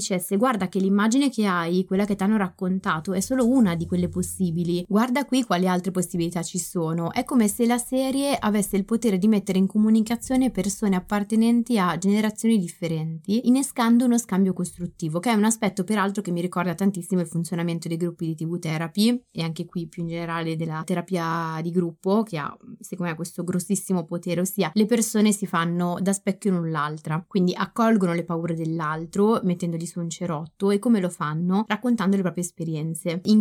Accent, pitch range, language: native, 170-210 Hz, Italian